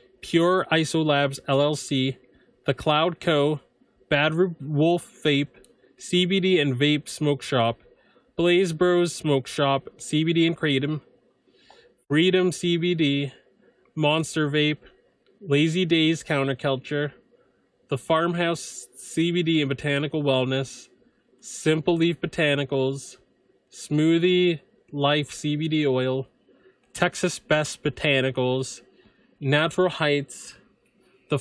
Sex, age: male, 20-39